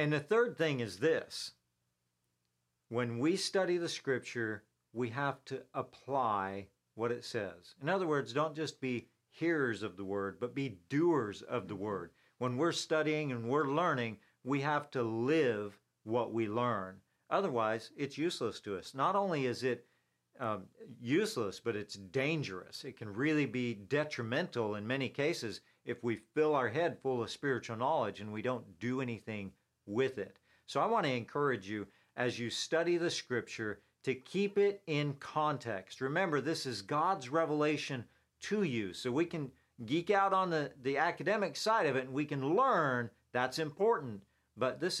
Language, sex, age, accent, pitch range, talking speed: English, male, 50-69, American, 105-150 Hz, 170 wpm